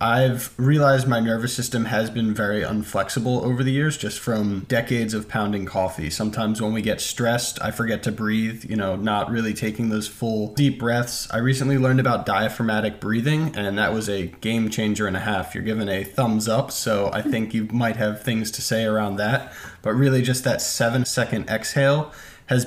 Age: 20-39